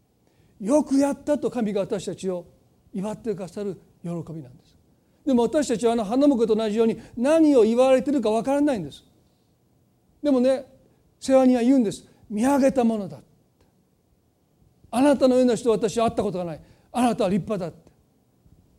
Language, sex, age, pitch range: Japanese, male, 40-59, 200-265 Hz